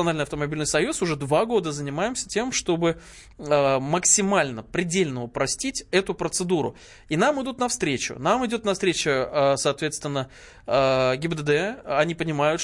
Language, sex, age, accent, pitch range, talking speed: Russian, male, 20-39, native, 135-175 Hz, 120 wpm